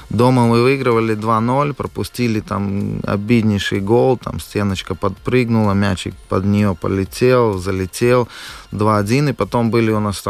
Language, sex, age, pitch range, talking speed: Russian, male, 20-39, 100-120 Hz, 115 wpm